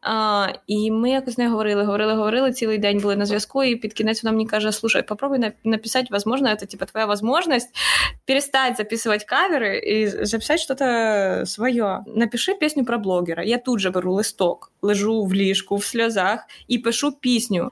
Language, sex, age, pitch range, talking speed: Ukrainian, female, 20-39, 200-240 Hz, 180 wpm